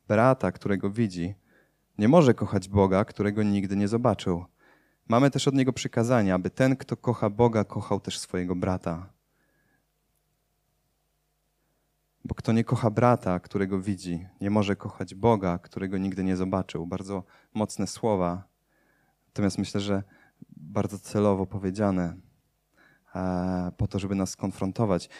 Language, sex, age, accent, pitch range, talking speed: Polish, male, 30-49, native, 100-120 Hz, 130 wpm